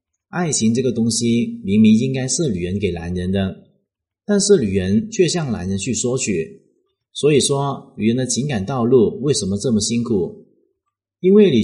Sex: male